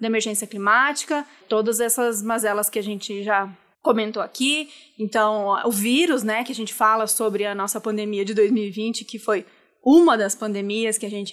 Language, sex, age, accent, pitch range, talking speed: Portuguese, female, 20-39, Brazilian, 210-255 Hz, 180 wpm